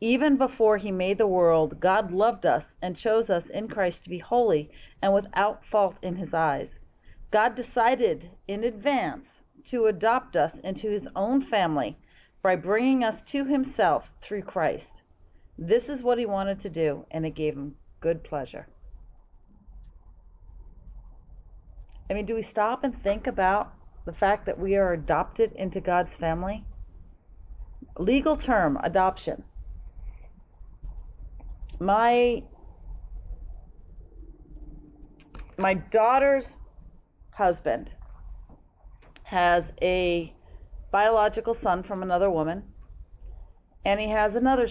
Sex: female